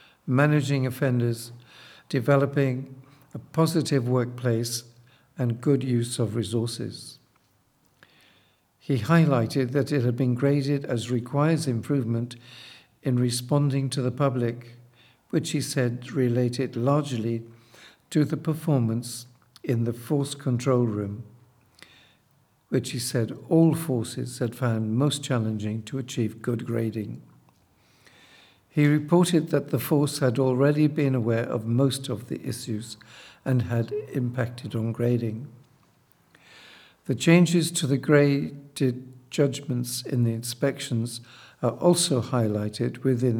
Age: 60-79